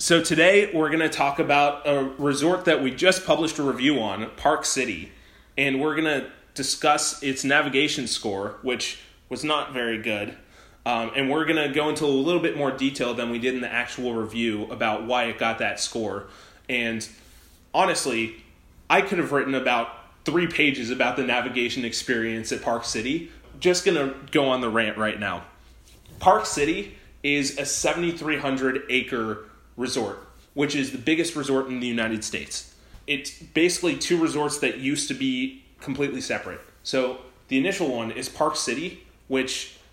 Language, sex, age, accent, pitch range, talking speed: English, male, 20-39, American, 120-150 Hz, 170 wpm